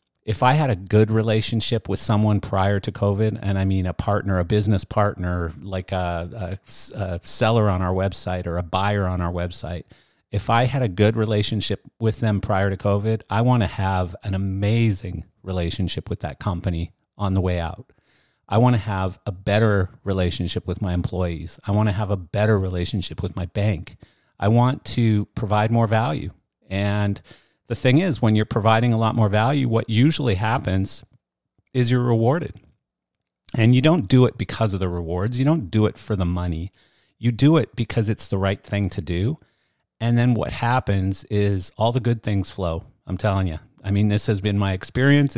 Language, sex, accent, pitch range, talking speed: English, male, American, 95-115 Hz, 195 wpm